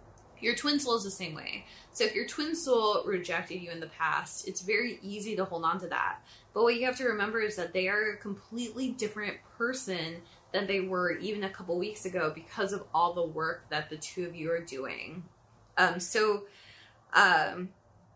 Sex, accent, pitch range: female, American, 175-250 Hz